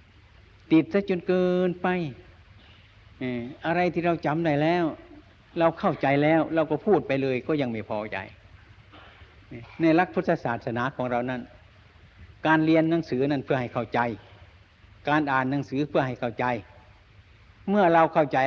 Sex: male